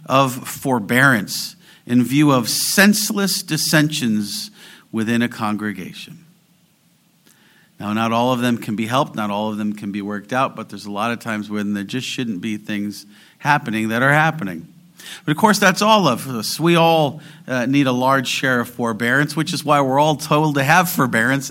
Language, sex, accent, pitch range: English, male, American, 110-170 Hz